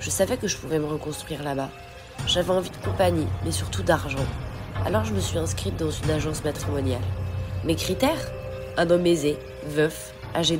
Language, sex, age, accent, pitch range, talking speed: French, female, 30-49, French, 115-175 Hz, 175 wpm